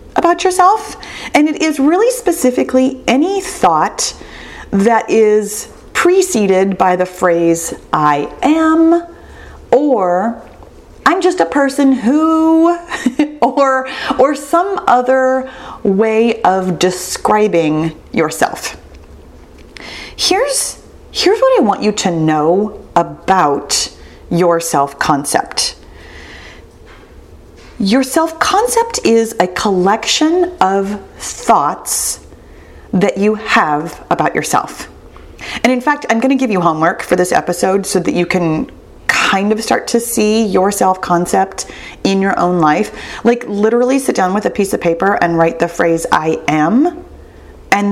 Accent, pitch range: American, 175-275 Hz